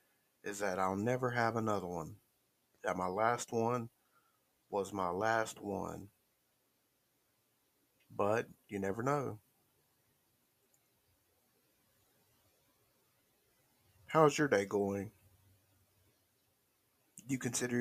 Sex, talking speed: male, 90 wpm